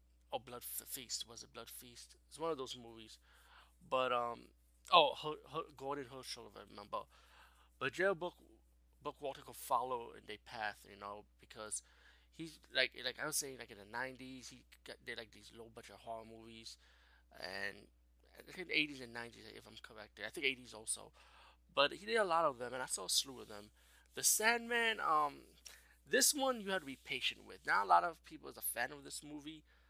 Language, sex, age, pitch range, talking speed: English, male, 20-39, 110-140 Hz, 205 wpm